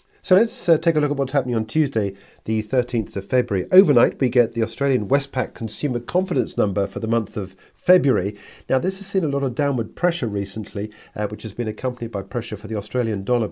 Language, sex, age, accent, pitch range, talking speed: English, male, 50-69, British, 105-125 Hz, 220 wpm